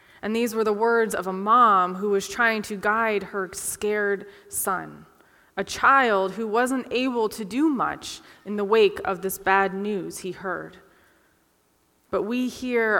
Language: English